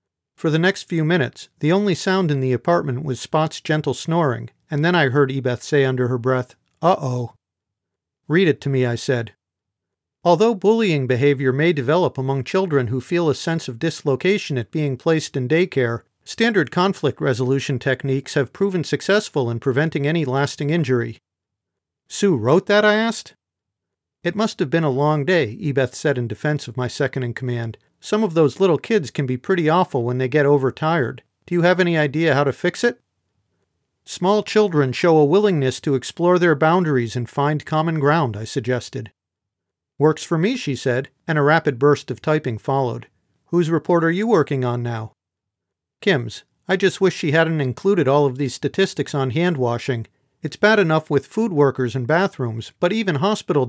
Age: 50-69